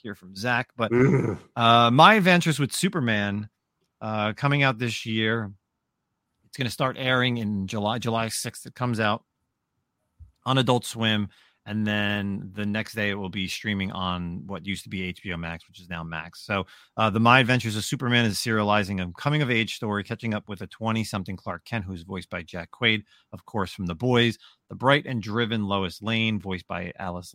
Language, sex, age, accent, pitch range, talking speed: English, male, 40-59, American, 95-120 Hz, 200 wpm